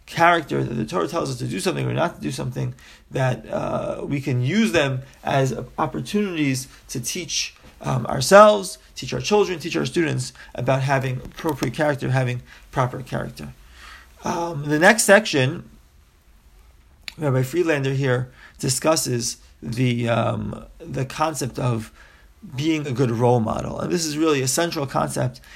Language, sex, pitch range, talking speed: English, male, 130-175 Hz, 150 wpm